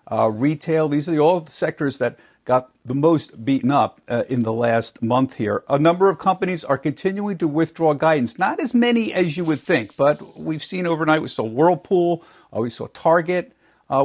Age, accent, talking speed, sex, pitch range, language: 50-69, American, 205 wpm, male, 125-165 Hz, English